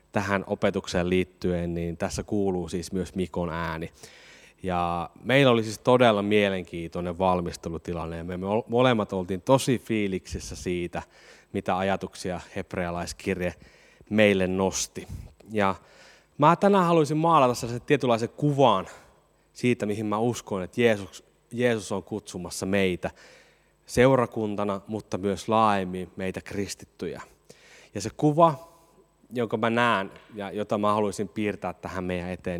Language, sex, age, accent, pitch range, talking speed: Finnish, male, 20-39, native, 90-115 Hz, 120 wpm